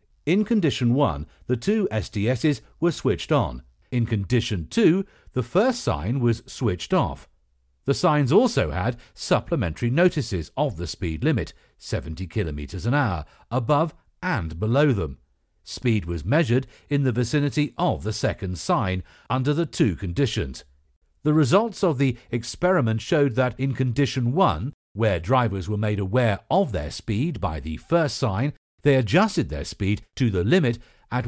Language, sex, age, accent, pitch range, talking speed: English, male, 50-69, British, 95-145 Hz, 155 wpm